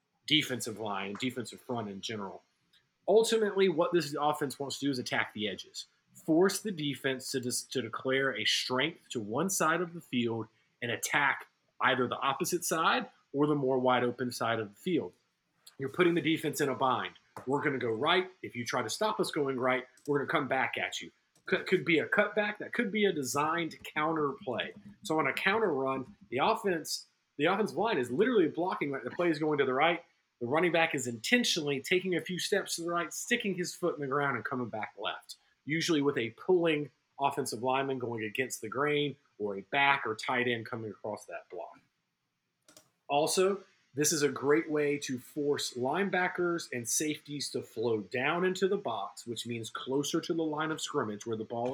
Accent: American